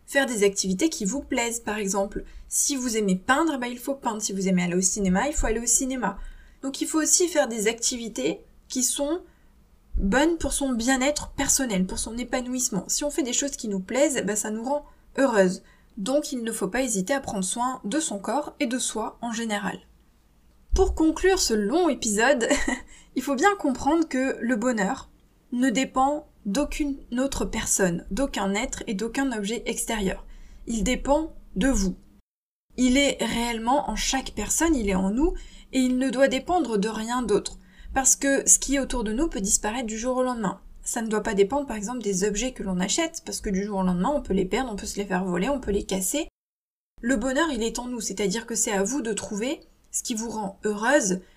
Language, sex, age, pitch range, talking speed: French, female, 20-39, 205-275 Hz, 215 wpm